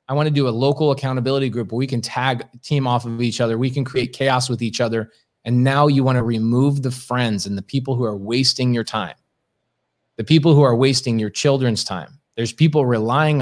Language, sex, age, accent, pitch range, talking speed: English, male, 30-49, American, 120-155 Hz, 230 wpm